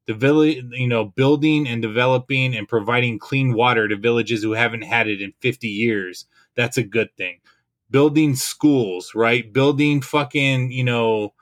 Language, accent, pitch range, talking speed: English, American, 105-125 Hz, 165 wpm